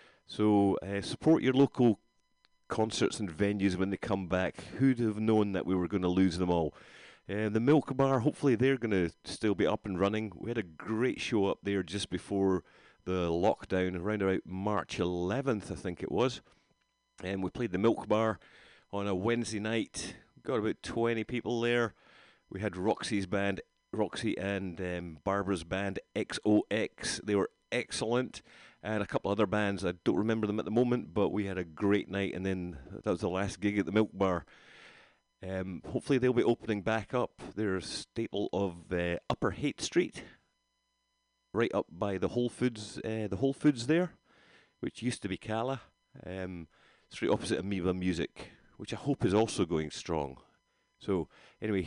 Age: 30-49